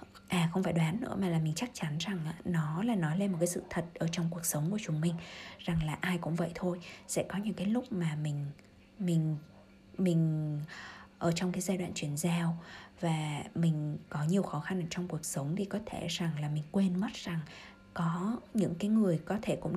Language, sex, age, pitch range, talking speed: Vietnamese, female, 20-39, 165-195 Hz, 225 wpm